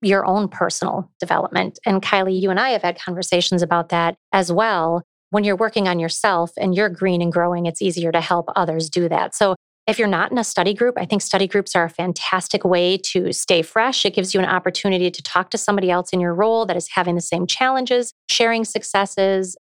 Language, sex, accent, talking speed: English, female, American, 225 wpm